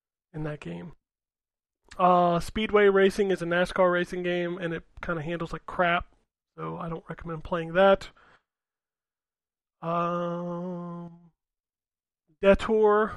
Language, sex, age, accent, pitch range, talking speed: English, male, 20-39, American, 170-195 Hz, 115 wpm